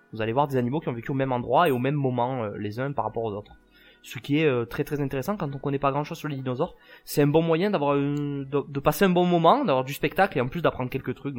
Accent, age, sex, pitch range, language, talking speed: French, 20-39, male, 115-155 Hz, French, 310 wpm